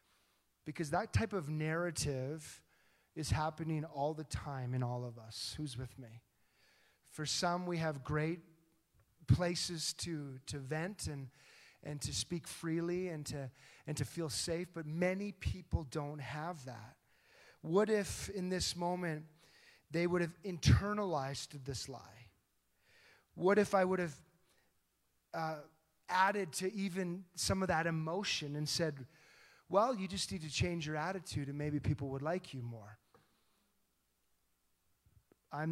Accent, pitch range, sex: American, 130-175 Hz, male